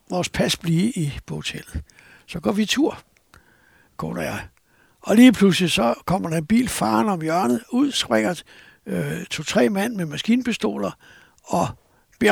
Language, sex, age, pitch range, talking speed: Danish, male, 60-79, 155-205 Hz, 155 wpm